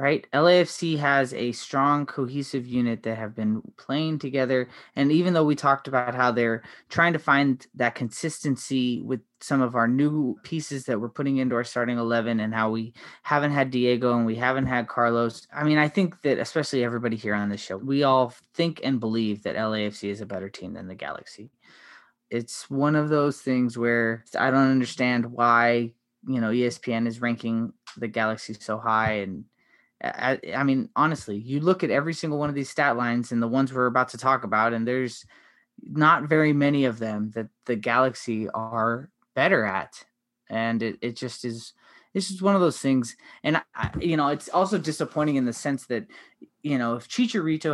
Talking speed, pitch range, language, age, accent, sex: 195 wpm, 115-145 Hz, English, 20-39, American, male